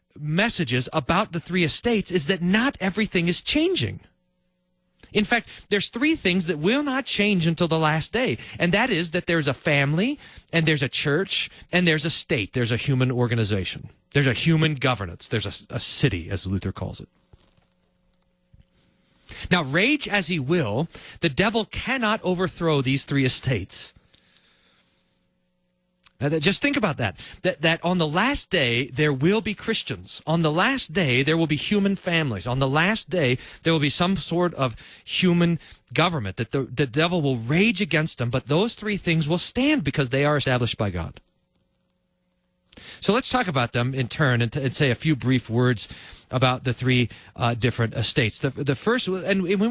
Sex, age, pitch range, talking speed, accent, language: male, 40-59, 125-185 Hz, 180 wpm, American, English